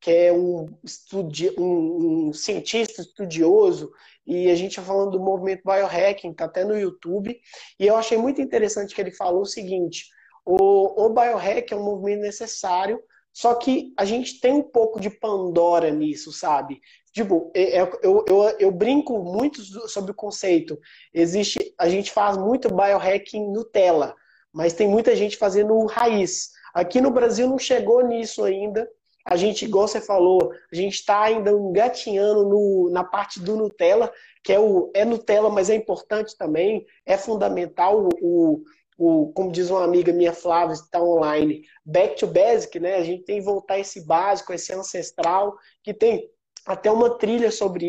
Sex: male